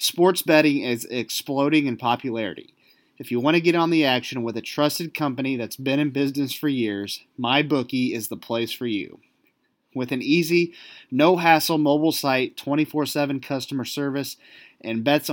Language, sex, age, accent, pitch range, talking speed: English, male, 30-49, American, 125-150 Hz, 160 wpm